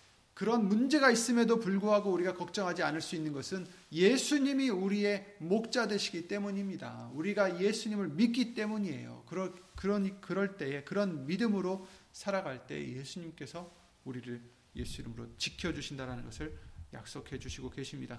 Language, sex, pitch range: Korean, male, 145-195 Hz